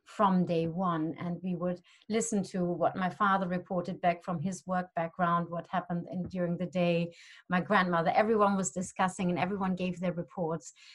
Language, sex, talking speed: English, female, 175 wpm